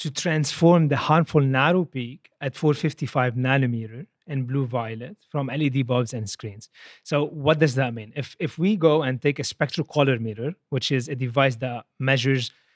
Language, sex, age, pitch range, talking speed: English, male, 30-49, 130-155 Hz, 180 wpm